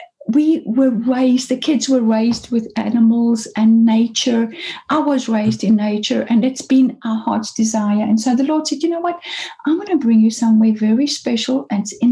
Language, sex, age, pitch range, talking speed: English, female, 60-79, 230-285 Hz, 205 wpm